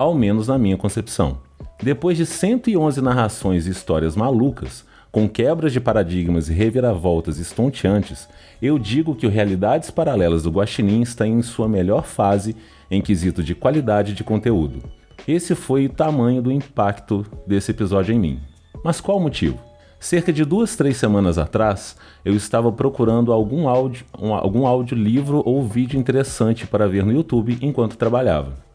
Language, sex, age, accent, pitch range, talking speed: Portuguese, male, 30-49, Brazilian, 100-130 Hz, 155 wpm